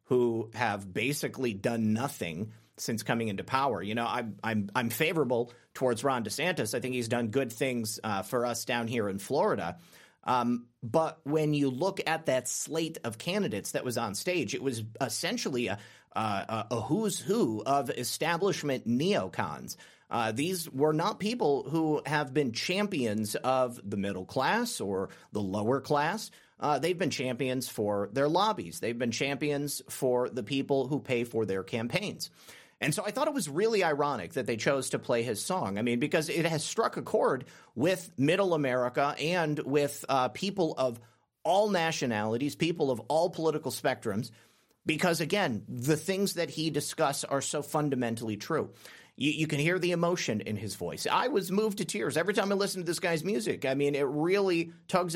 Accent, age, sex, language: American, 30-49, male, English